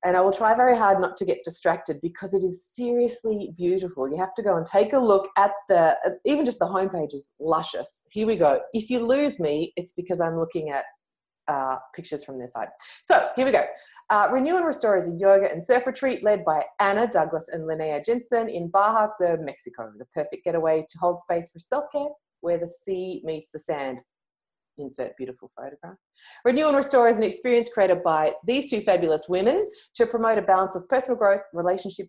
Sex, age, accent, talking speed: female, 30-49, Australian, 205 wpm